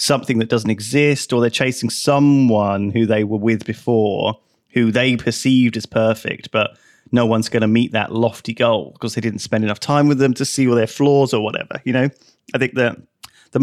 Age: 30-49